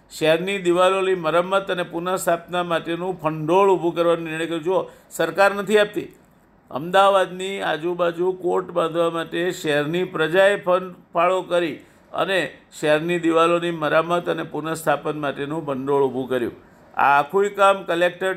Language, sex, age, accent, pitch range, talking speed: Gujarati, male, 50-69, native, 160-185 Hz, 110 wpm